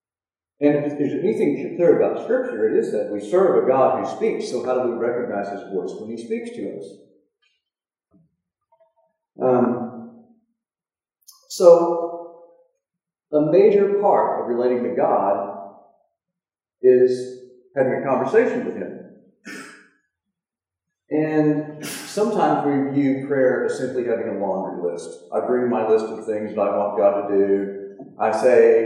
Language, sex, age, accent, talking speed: English, male, 50-69, American, 140 wpm